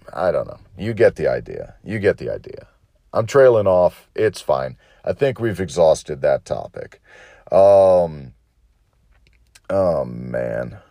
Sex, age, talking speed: male, 40-59, 145 wpm